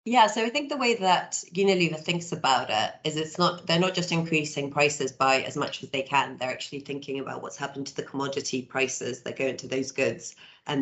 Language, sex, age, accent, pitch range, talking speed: English, female, 30-49, British, 135-155 Hz, 235 wpm